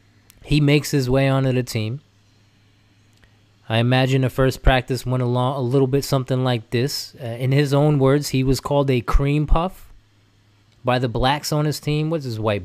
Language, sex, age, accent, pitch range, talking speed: English, male, 20-39, American, 110-155 Hz, 190 wpm